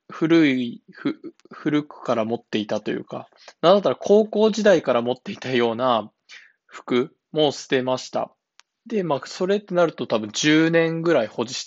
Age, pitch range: 20-39, 125-195 Hz